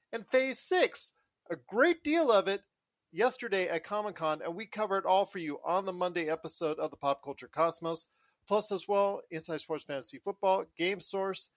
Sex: male